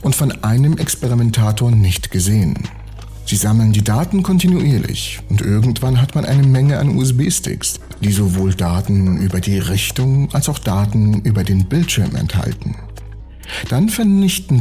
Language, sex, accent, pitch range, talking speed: German, male, German, 100-135 Hz, 140 wpm